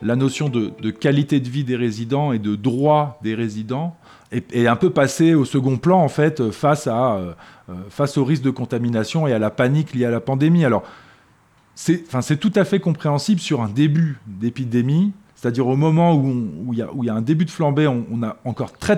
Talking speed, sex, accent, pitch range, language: 210 wpm, male, French, 115-150 Hz, French